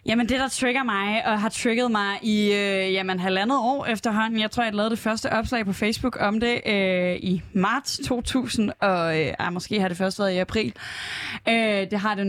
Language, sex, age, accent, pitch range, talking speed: Danish, female, 20-39, native, 195-235 Hz, 210 wpm